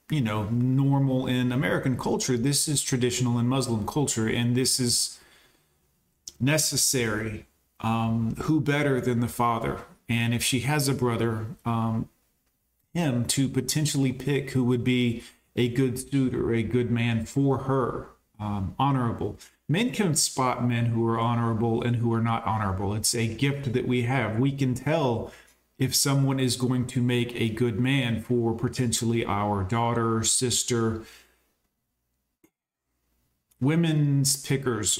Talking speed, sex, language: 145 wpm, male, English